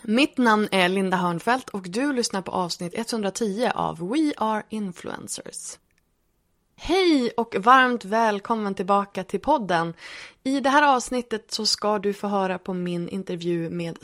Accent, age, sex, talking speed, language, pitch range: native, 20-39, female, 150 wpm, Swedish, 185-250 Hz